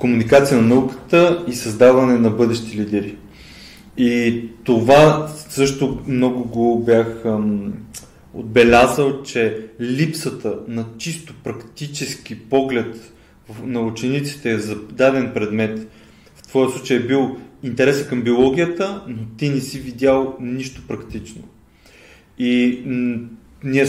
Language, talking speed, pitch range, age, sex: Bulgarian, 115 wpm, 115-145 Hz, 20-39, male